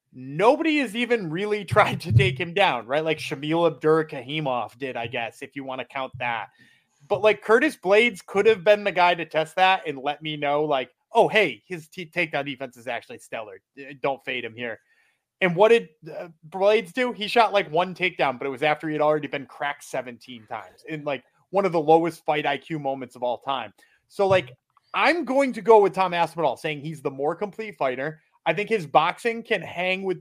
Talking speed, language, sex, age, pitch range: 215 wpm, English, male, 30-49, 145-205 Hz